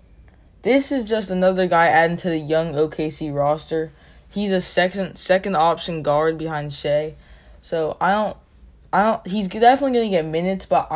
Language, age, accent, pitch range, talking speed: English, 10-29, American, 150-175 Hz, 165 wpm